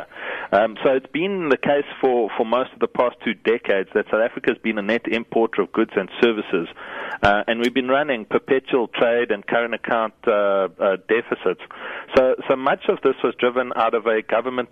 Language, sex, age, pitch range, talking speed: English, male, 40-59, 110-130 Hz, 205 wpm